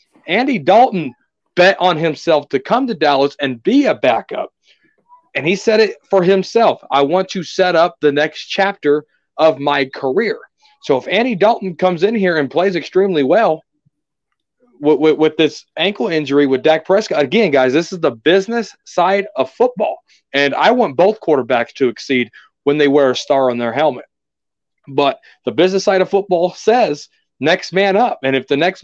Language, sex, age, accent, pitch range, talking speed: English, male, 40-59, American, 140-195 Hz, 185 wpm